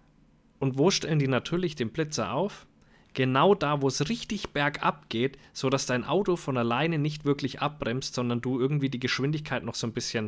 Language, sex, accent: German, male, German